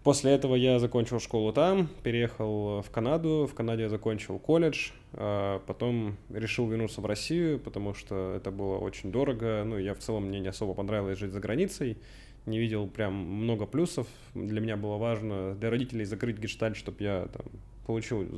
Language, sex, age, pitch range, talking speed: Russian, male, 20-39, 105-125 Hz, 170 wpm